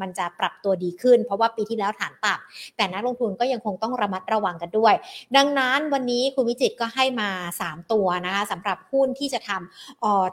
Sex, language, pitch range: female, Thai, 200-260 Hz